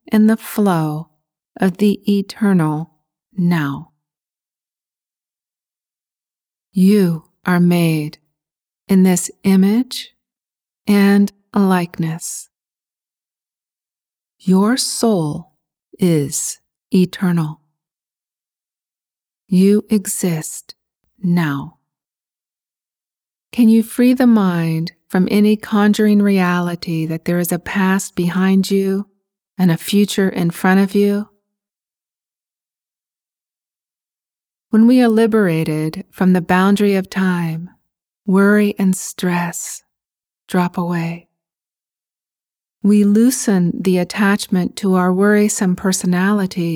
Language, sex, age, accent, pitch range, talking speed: English, female, 50-69, American, 175-205 Hz, 85 wpm